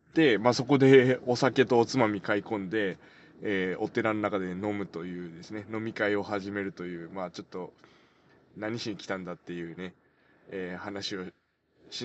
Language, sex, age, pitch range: Japanese, male, 20-39, 100-150 Hz